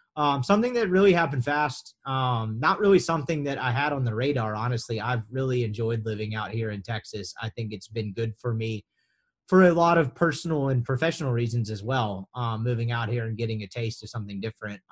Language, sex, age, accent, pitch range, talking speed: English, male, 30-49, American, 115-150 Hz, 215 wpm